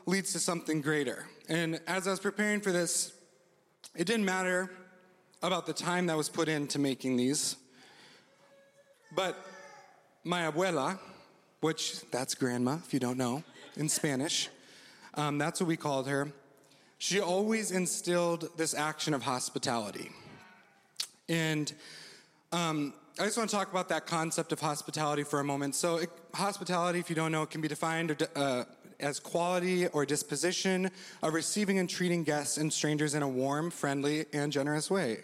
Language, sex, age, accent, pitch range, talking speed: English, male, 30-49, American, 150-185 Hz, 160 wpm